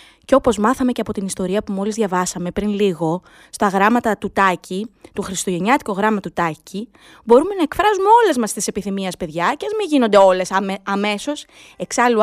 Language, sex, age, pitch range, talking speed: Greek, female, 20-39, 190-285 Hz, 175 wpm